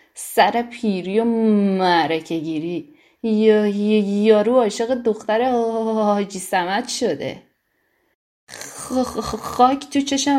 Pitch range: 195-245 Hz